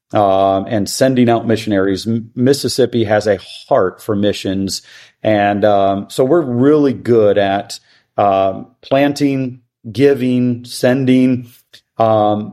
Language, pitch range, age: English, 105-120 Hz, 40-59